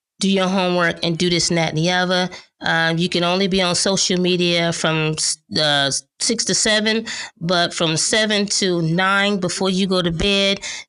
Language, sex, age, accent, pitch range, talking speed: English, female, 20-39, American, 155-190 Hz, 185 wpm